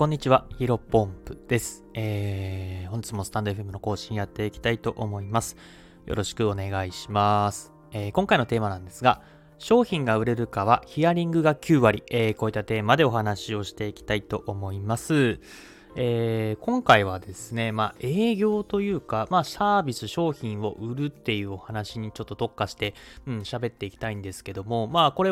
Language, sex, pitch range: Japanese, male, 105-150 Hz